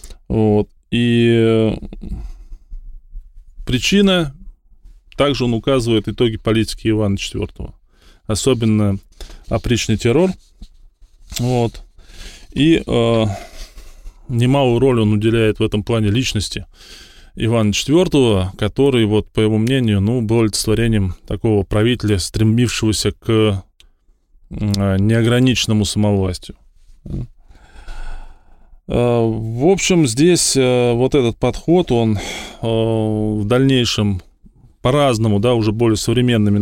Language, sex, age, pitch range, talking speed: Russian, male, 20-39, 100-120 Hz, 85 wpm